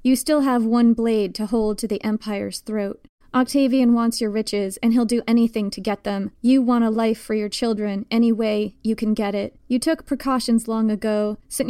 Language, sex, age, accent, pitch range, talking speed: English, female, 20-39, American, 210-235 Hz, 210 wpm